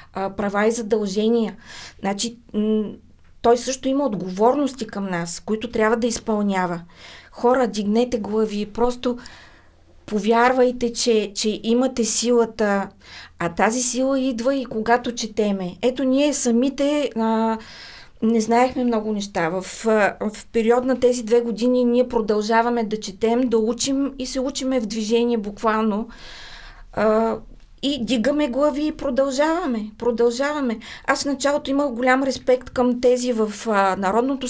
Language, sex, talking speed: Bulgarian, female, 130 wpm